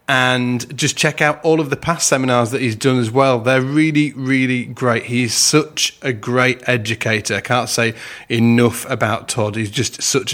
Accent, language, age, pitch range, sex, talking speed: British, English, 30-49, 120-145 Hz, male, 185 wpm